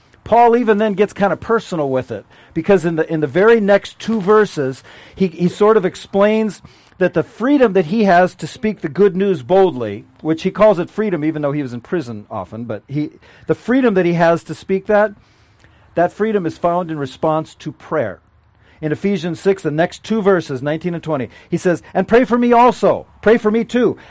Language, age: English, 50-69